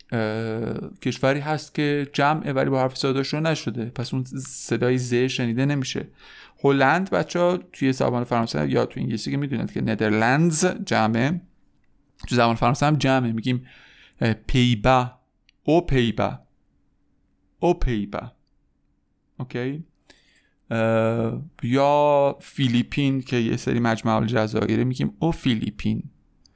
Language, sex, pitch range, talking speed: Persian, male, 110-140 Hz, 120 wpm